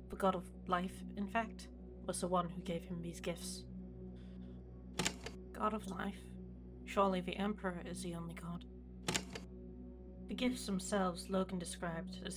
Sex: female